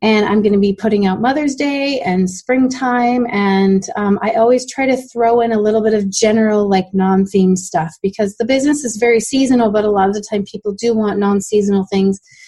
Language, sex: English, female